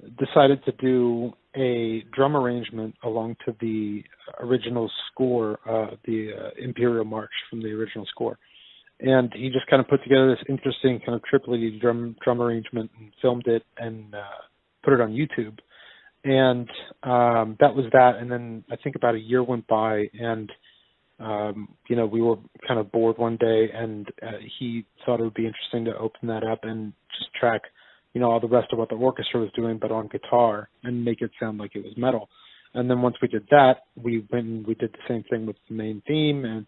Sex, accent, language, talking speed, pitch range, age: male, American, English, 205 wpm, 110-125 Hz, 30-49